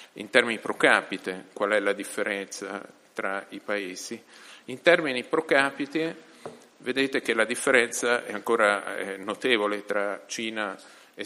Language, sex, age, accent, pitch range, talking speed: Italian, male, 40-59, native, 105-125 Hz, 135 wpm